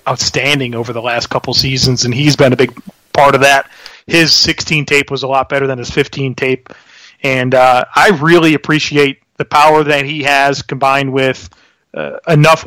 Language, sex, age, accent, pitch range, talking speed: English, male, 30-49, American, 130-145 Hz, 185 wpm